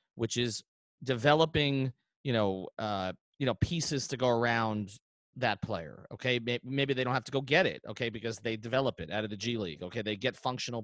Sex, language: male, English